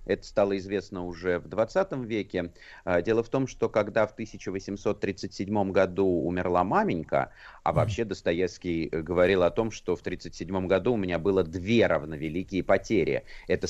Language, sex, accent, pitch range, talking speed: Russian, male, native, 90-115 Hz, 150 wpm